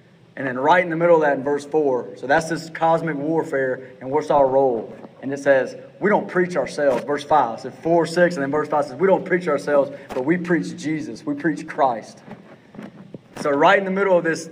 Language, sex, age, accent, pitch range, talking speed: English, male, 30-49, American, 135-170 Hz, 230 wpm